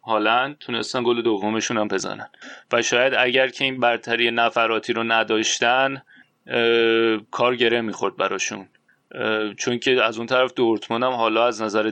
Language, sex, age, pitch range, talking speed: Persian, male, 30-49, 110-125 Hz, 145 wpm